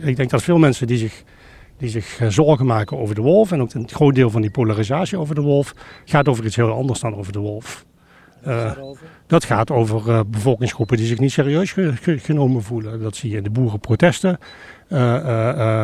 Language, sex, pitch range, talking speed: Dutch, male, 115-155 Hz, 200 wpm